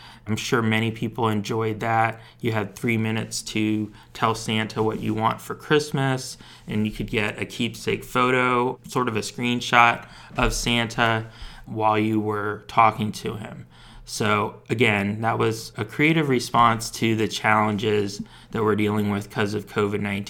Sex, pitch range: male, 105-120 Hz